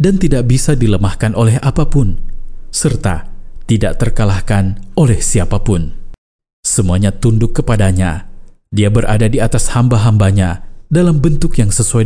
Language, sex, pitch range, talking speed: Indonesian, male, 95-120 Hz, 115 wpm